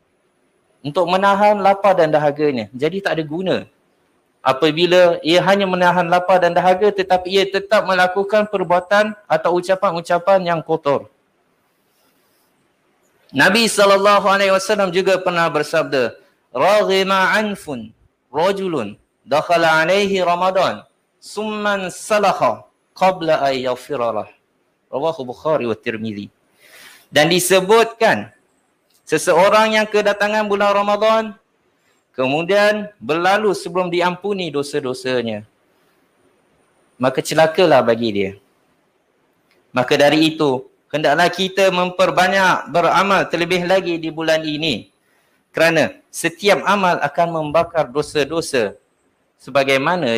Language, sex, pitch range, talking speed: Malay, male, 150-195 Hz, 95 wpm